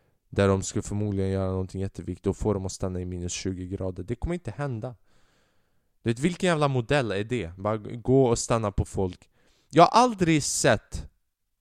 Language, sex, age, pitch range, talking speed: Swedish, male, 20-39, 90-120 Hz, 185 wpm